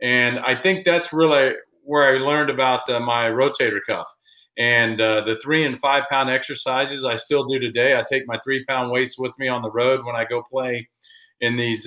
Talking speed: 210 wpm